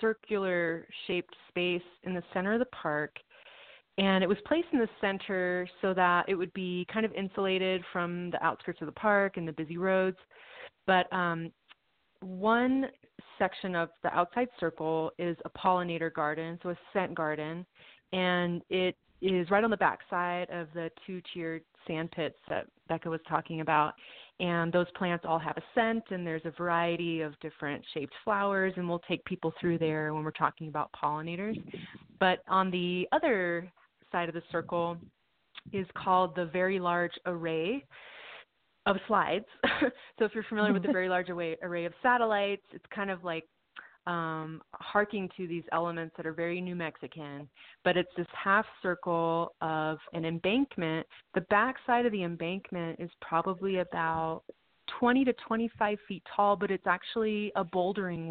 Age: 30-49